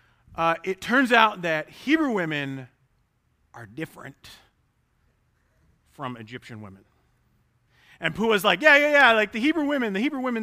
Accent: American